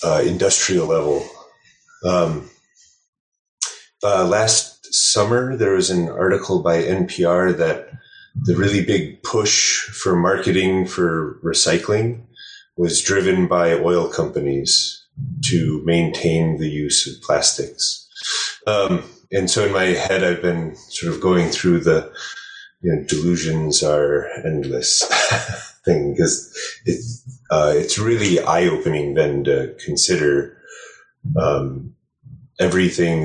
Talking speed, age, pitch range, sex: 115 wpm, 30-49, 75-110 Hz, male